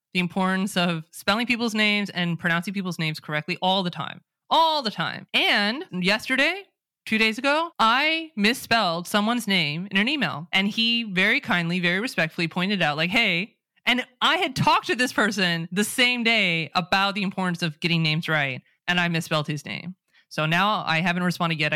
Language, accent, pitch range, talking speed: English, American, 155-210 Hz, 185 wpm